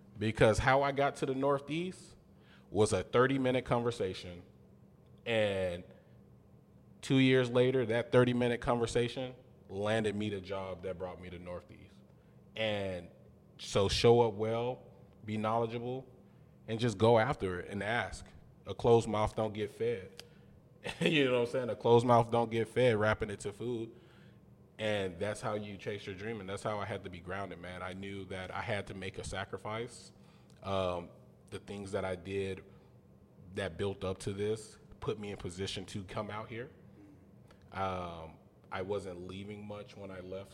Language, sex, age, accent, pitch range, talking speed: English, male, 20-39, American, 95-115 Hz, 170 wpm